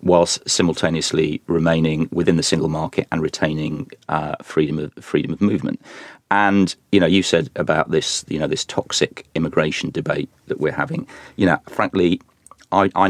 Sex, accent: male, British